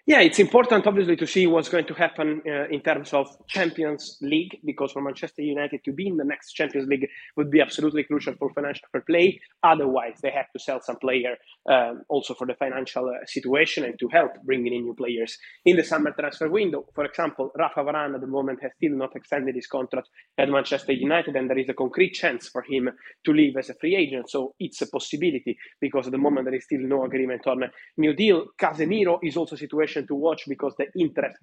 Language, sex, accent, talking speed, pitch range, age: English, male, Italian, 225 wpm, 130-160 Hz, 20-39